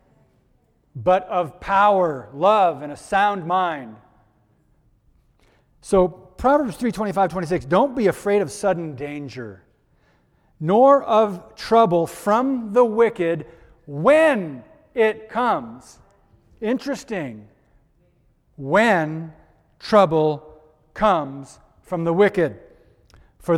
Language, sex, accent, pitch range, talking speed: English, male, American, 140-180 Hz, 90 wpm